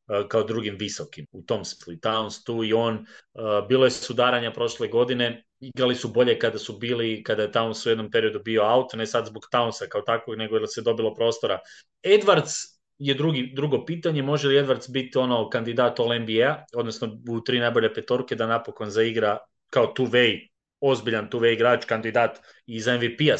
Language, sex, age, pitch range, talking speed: English, male, 30-49, 115-140 Hz, 180 wpm